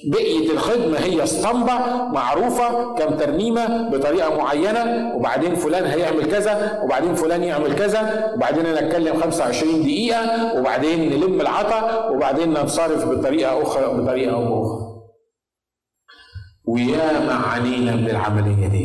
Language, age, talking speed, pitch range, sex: Arabic, 50-69, 110 wpm, 120-200 Hz, male